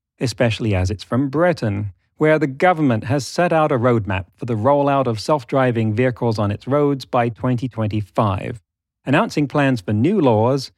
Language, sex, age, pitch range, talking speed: English, male, 40-59, 105-140 Hz, 160 wpm